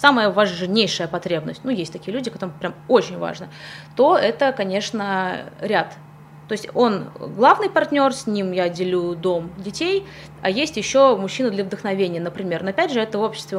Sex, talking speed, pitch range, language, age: female, 170 wpm, 185-245 Hz, Russian, 20-39